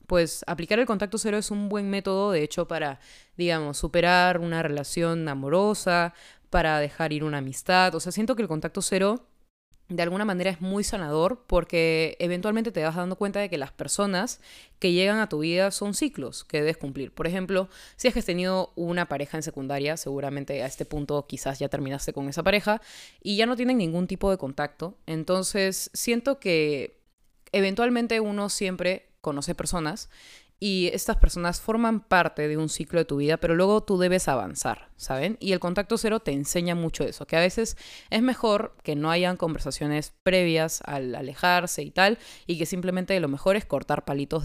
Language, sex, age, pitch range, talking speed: Spanish, female, 20-39, 155-200 Hz, 190 wpm